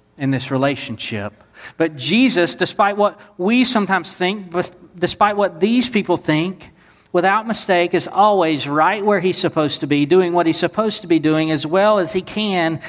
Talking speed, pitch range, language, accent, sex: 170 wpm, 120-180 Hz, English, American, male